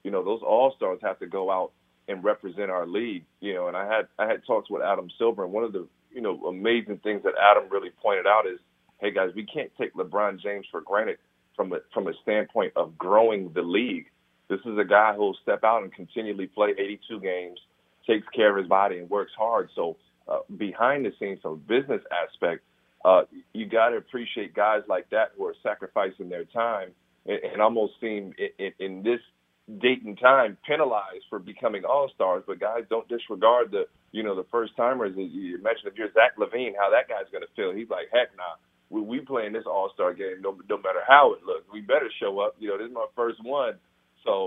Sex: male